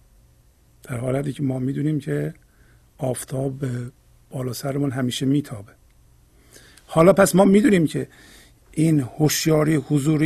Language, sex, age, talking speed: Persian, male, 50-69, 110 wpm